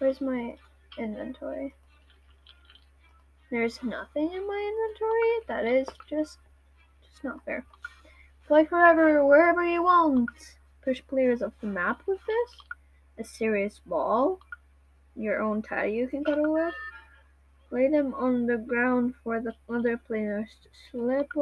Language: English